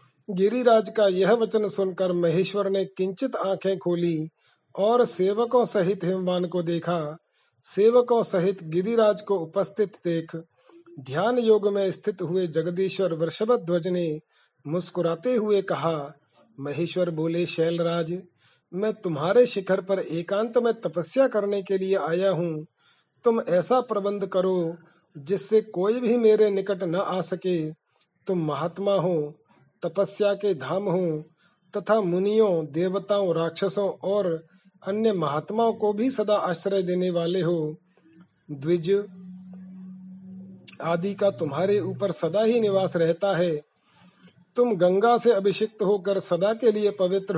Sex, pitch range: male, 170-205 Hz